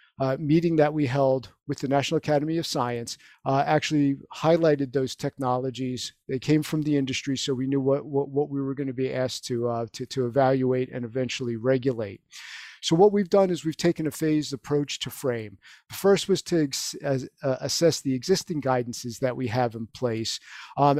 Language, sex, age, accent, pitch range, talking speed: English, male, 50-69, American, 130-155 Hz, 195 wpm